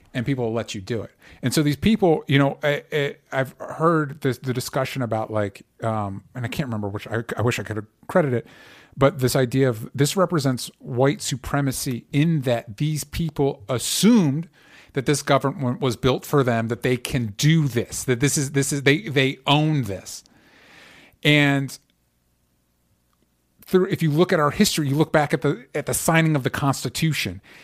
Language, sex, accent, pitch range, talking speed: English, male, American, 120-150 Hz, 195 wpm